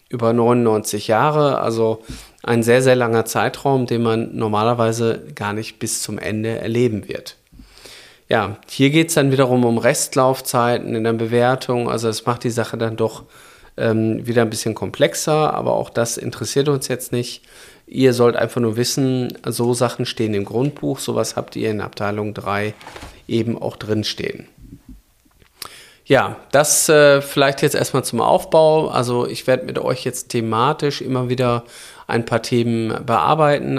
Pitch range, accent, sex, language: 115-135 Hz, German, male, German